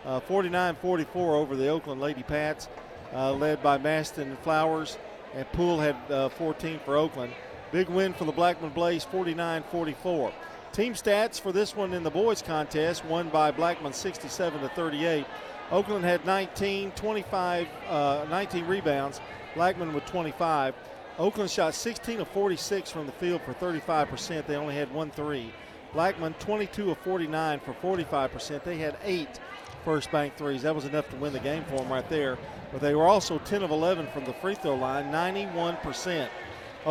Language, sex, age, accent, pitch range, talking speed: English, male, 40-59, American, 145-180 Hz, 165 wpm